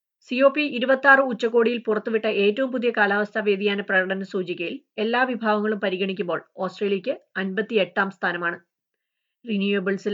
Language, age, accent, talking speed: Malayalam, 20-39, native, 120 wpm